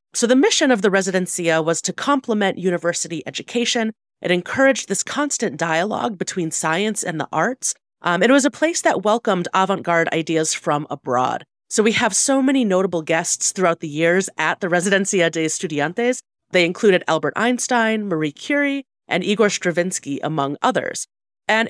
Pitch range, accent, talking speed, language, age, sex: 165-225 Hz, American, 165 wpm, English, 30-49, female